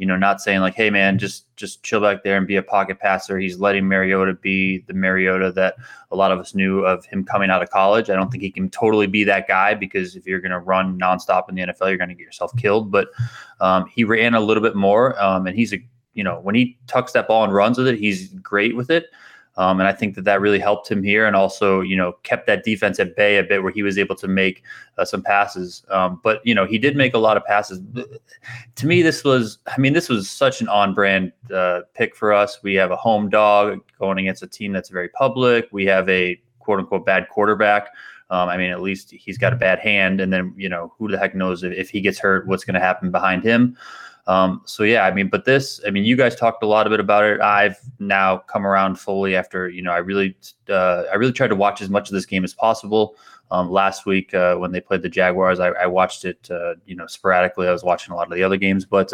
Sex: male